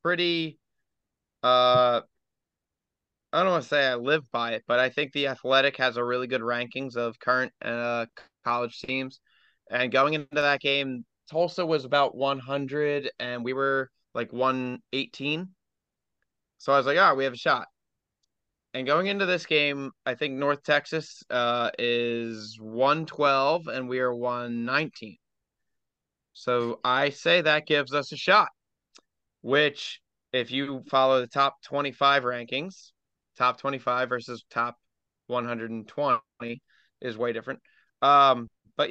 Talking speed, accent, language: 140 wpm, American, English